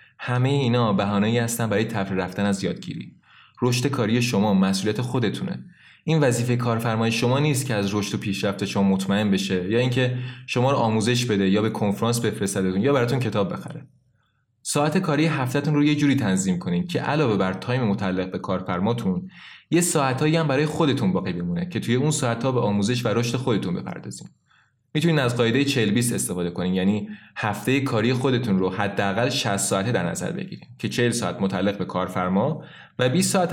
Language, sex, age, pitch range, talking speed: Persian, male, 20-39, 105-135 Hz, 175 wpm